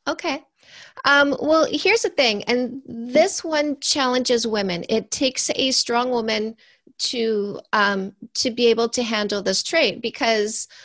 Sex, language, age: female, English, 30-49